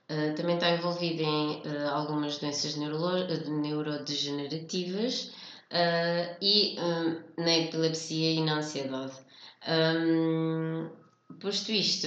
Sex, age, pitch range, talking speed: female, 20-39, 155-175 Hz, 105 wpm